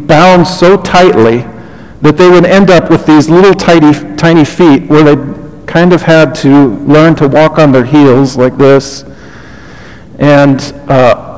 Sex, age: male, 50-69